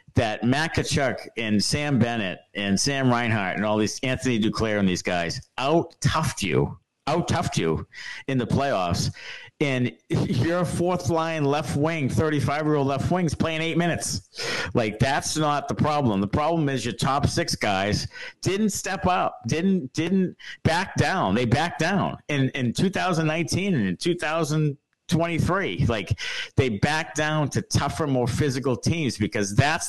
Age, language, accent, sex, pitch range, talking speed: 50-69, English, American, male, 115-160 Hz, 150 wpm